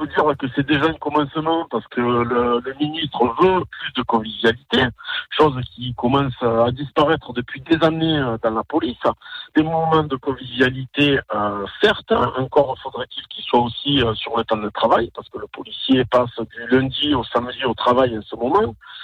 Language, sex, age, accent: French, male, 50-69, French